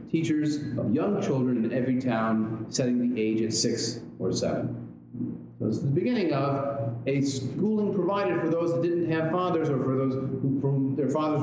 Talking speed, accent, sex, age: 190 wpm, American, male, 40-59